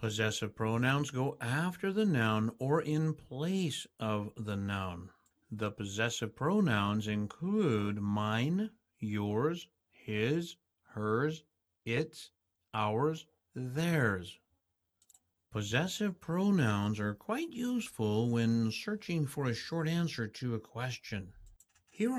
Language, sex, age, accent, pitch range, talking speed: English, male, 60-79, American, 105-155 Hz, 105 wpm